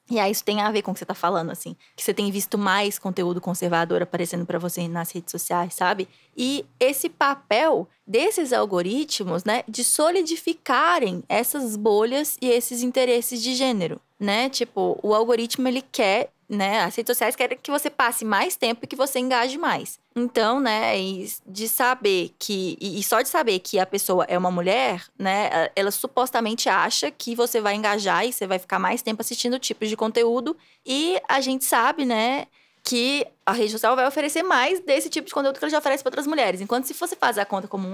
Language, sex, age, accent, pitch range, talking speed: English, female, 20-39, Brazilian, 205-270 Hz, 200 wpm